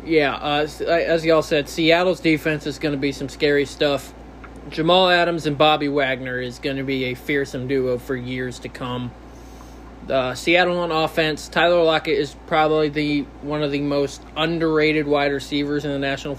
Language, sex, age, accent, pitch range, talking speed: English, male, 20-39, American, 145-170 Hz, 185 wpm